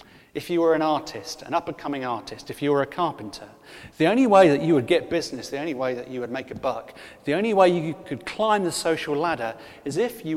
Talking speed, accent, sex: 245 wpm, British, male